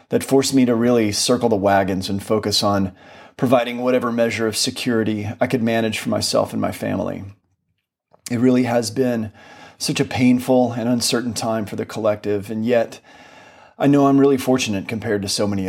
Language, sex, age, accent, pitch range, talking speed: English, male, 30-49, American, 100-125 Hz, 185 wpm